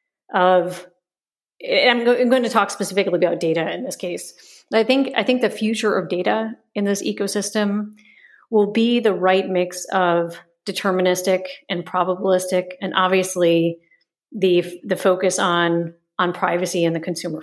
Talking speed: 150 wpm